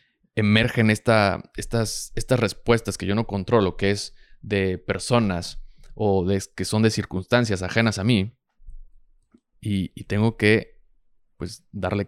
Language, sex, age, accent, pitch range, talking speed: Spanish, male, 20-39, Mexican, 95-120 Hz, 125 wpm